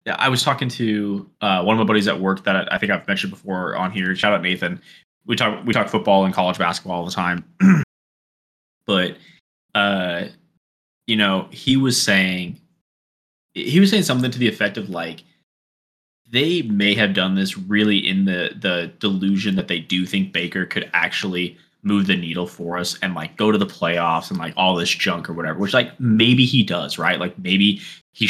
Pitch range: 90-115 Hz